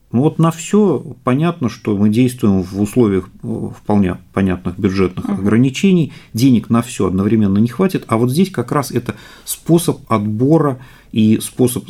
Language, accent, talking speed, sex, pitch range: Russian, native, 150 wpm, male, 95-120 Hz